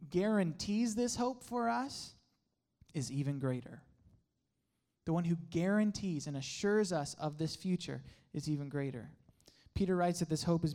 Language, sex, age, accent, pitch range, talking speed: English, male, 20-39, American, 140-180 Hz, 150 wpm